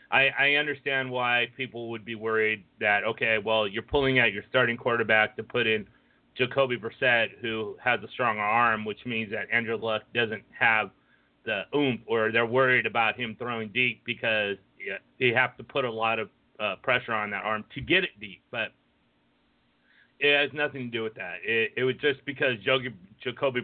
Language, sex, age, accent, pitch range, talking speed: English, male, 30-49, American, 110-135 Hz, 190 wpm